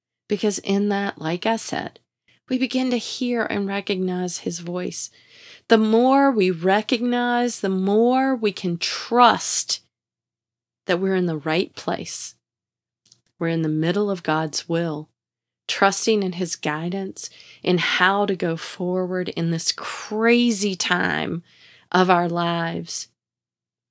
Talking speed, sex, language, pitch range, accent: 130 wpm, female, English, 170-235 Hz, American